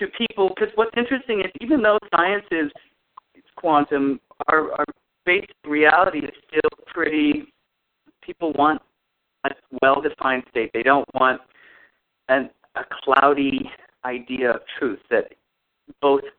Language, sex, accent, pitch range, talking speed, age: English, male, American, 125-195 Hz, 130 wpm, 50-69